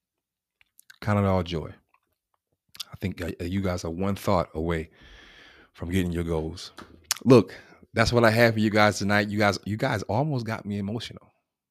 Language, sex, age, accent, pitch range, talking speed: English, male, 30-49, American, 85-100 Hz, 175 wpm